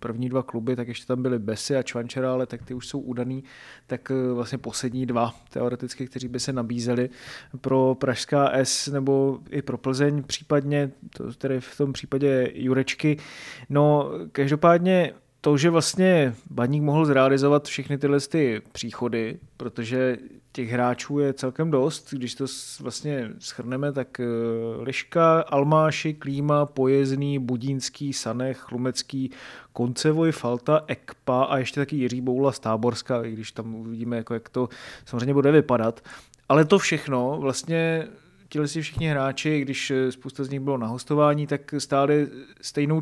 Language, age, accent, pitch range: Czech, 30-49, native, 125-150 Hz